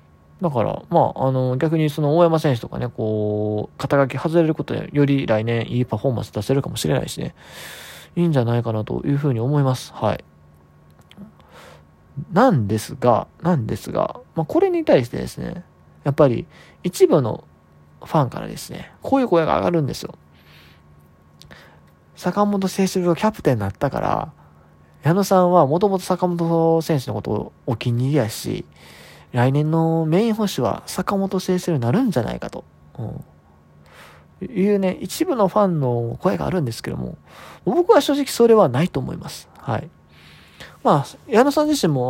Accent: native